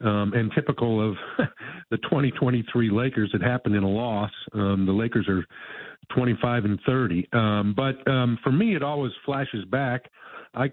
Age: 50-69